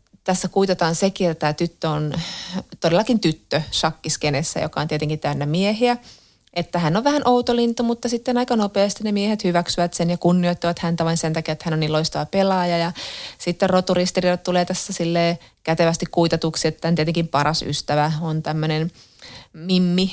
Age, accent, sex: 30-49, native, female